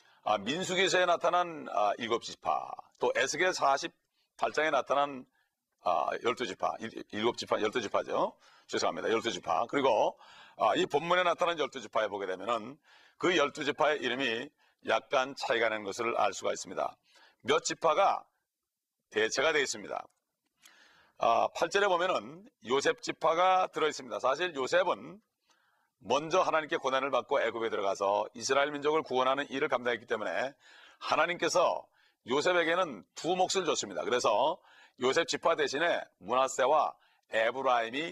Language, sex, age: Korean, male, 40-59